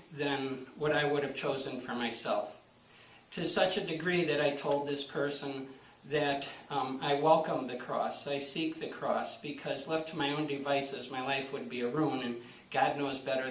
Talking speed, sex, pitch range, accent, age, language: 190 wpm, male, 135-160 Hz, American, 50-69, English